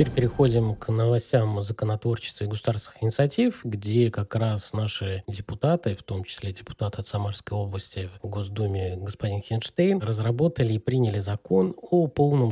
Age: 20-39